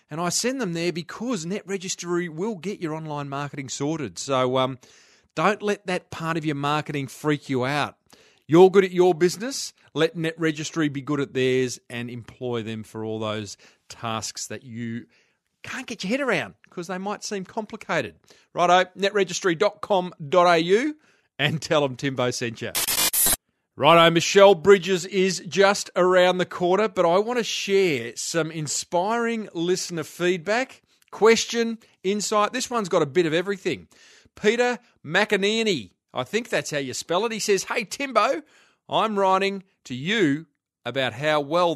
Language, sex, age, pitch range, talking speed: English, male, 30-49, 145-195 Hz, 155 wpm